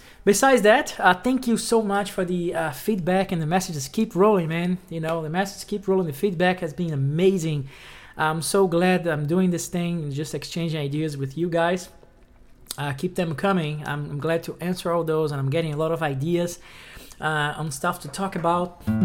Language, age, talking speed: English, 20-39, 210 wpm